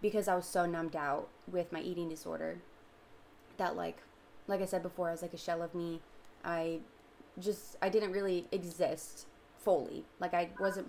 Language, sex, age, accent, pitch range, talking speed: English, female, 20-39, American, 170-195 Hz, 180 wpm